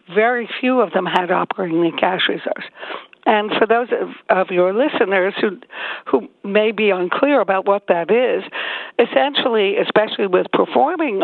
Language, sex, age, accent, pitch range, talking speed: English, female, 60-79, American, 180-225 Hz, 155 wpm